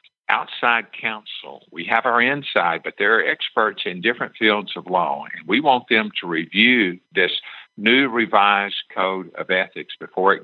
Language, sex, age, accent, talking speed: English, male, 50-69, American, 165 wpm